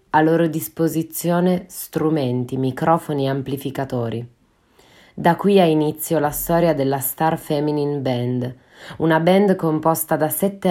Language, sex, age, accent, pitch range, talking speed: Italian, female, 20-39, native, 135-170 Hz, 125 wpm